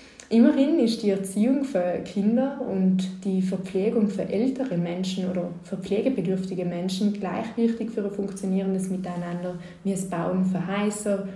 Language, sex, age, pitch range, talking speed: German, female, 20-39, 180-225 Hz, 135 wpm